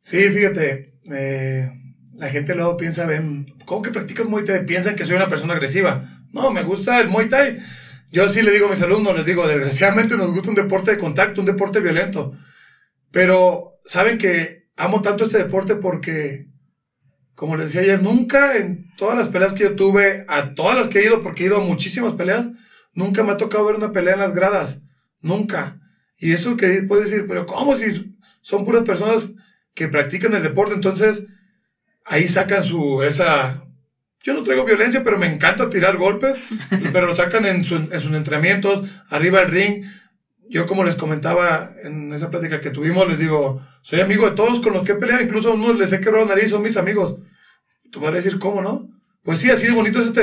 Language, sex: Spanish, male